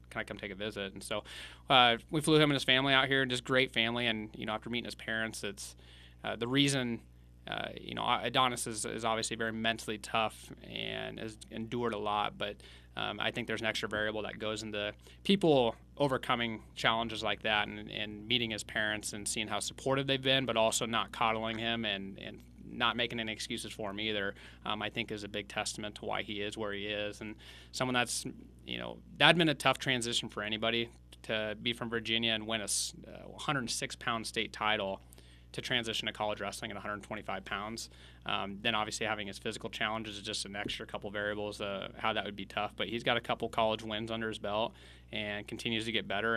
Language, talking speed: English, 215 wpm